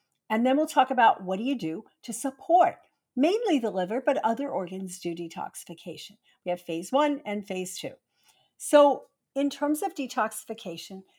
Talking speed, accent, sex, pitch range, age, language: 165 wpm, American, female, 185-265 Hz, 50-69, English